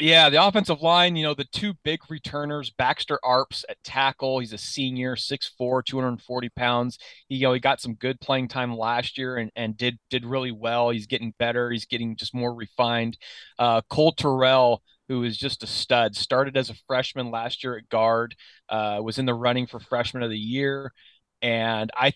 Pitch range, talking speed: 115-140 Hz, 200 wpm